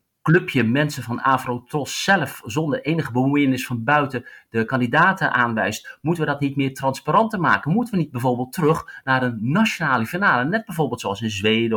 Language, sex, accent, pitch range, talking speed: Dutch, male, Dutch, 120-165 Hz, 180 wpm